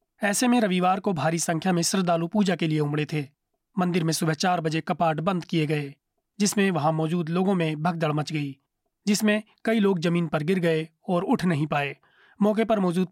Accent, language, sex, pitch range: native, Hindi, male, 160-200 Hz